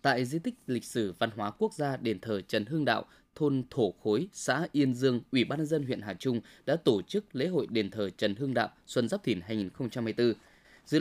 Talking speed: 230 wpm